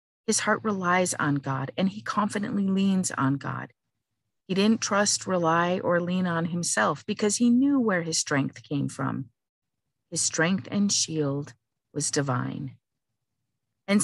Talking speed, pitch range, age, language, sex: 145 wpm, 140-195 Hz, 50-69, English, female